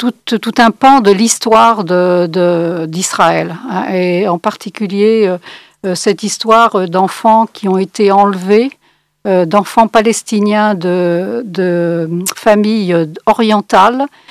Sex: female